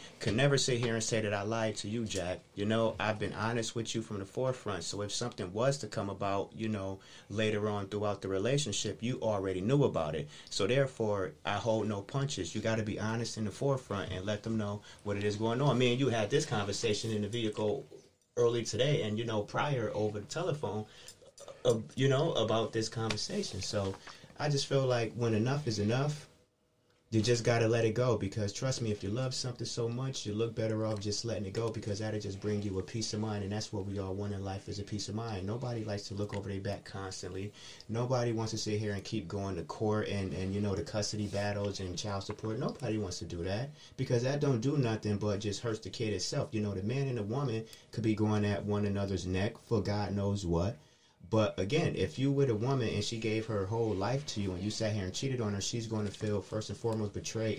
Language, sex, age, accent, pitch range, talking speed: English, male, 30-49, American, 100-115 Hz, 245 wpm